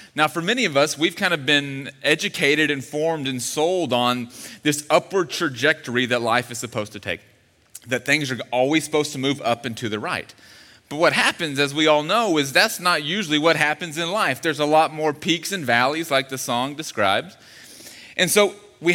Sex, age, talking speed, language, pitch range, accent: male, 30-49, 205 wpm, English, 120-155 Hz, American